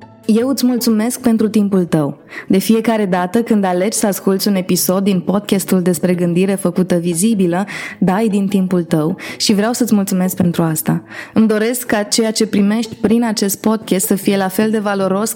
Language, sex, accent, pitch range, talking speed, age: Romanian, female, native, 185-230 Hz, 180 wpm, 20-39